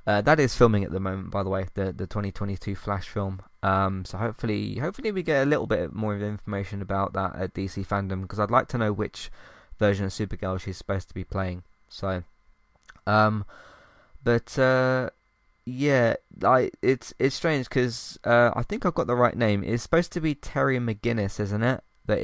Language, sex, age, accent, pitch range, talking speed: English, male, 20-39, British, 95-115 Hz, 195 wpm